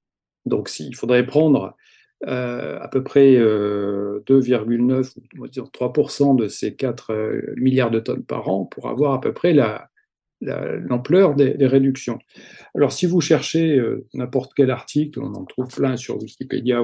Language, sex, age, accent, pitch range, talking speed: French, male, 50-69, French, 125-145 Hz, 155 wpm